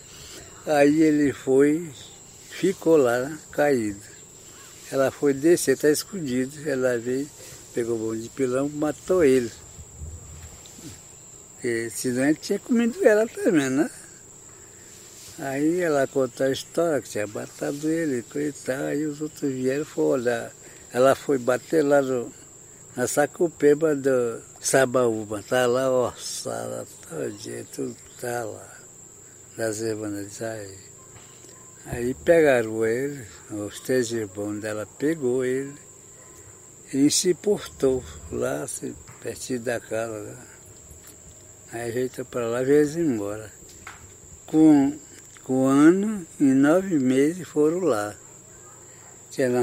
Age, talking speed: 60-79, 125 wpm